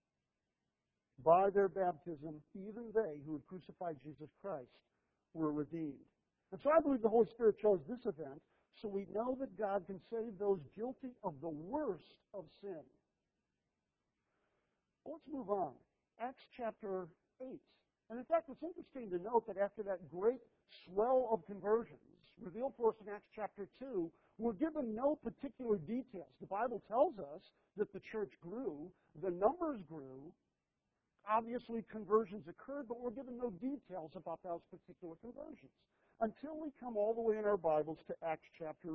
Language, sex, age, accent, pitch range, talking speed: English, male, 60-79, American, 180-240 Hz, 160 wpm